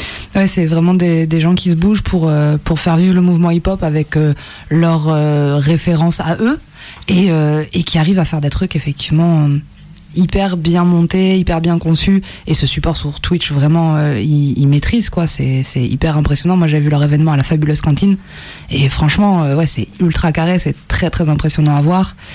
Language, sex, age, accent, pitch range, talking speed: French, female, 20-39, French, 150-180 Hz, 200 wpm